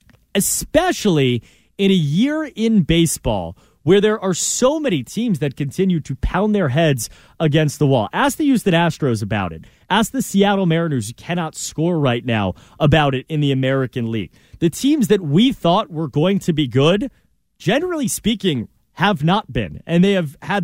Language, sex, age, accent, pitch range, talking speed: English, male, 30-49, American, 130-180 Hz, 175 wpm